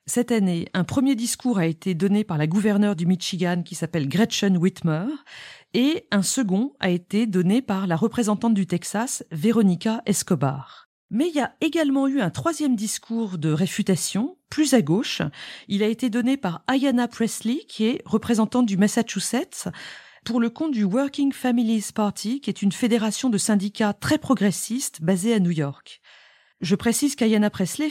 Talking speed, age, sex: 170 wpm, 40-59, female